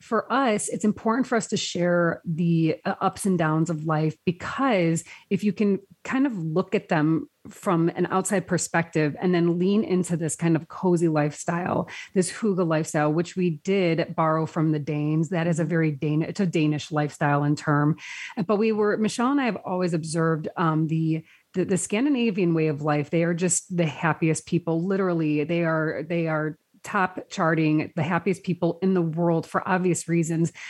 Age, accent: 30-49, American